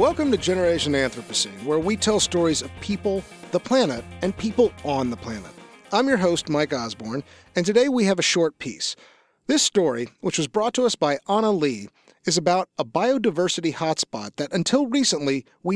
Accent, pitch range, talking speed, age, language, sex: American, 160-215 Hz, 185 wpm, 40-59, English, male